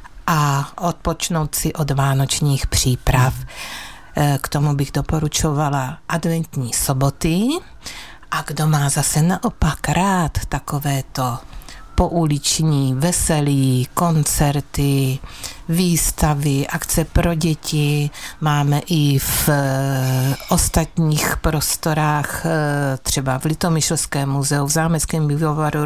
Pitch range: 140-170 Hz